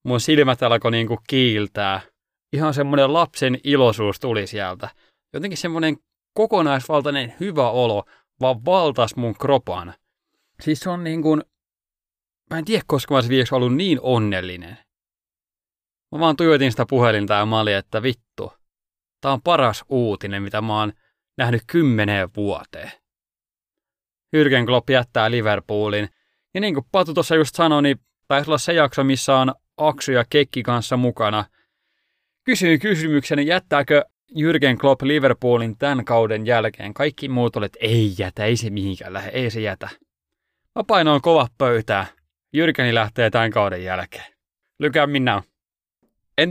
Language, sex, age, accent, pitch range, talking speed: Finnish, male, 30-49, native, 110-145 Hz, 135 wpm